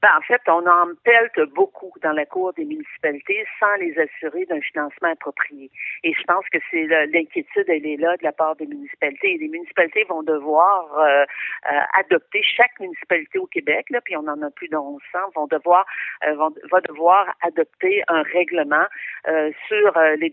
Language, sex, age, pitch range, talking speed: French, female, 50-69, 160-200 Hz, 195 wpm